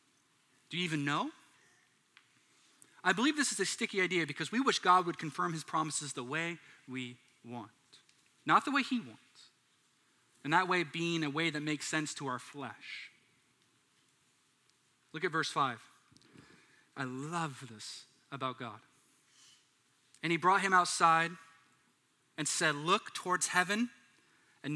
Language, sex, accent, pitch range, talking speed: English, male, American, 140-190 Hz, 145 wpm